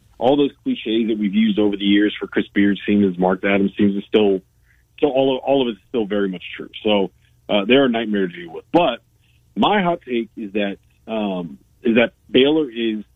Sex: male